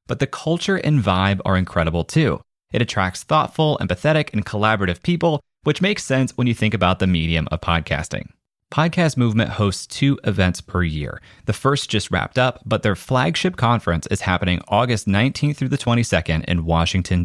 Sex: male